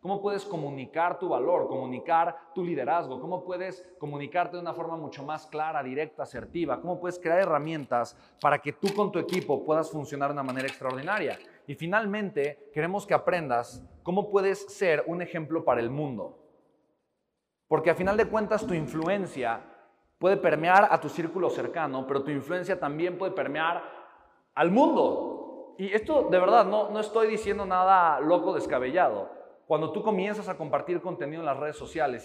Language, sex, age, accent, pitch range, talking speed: Spanish, male, 30-49, Mexican, 150-185 Hz, 165 wpm